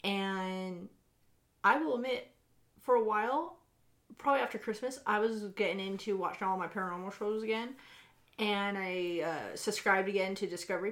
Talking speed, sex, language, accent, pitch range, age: 150 wpm, female, English, American, 180-220 Hz, 30-49